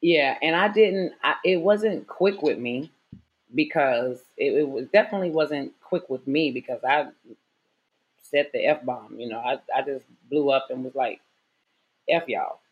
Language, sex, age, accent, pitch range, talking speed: English, female, 30-49, American, 145-175 Hz, 165 wpm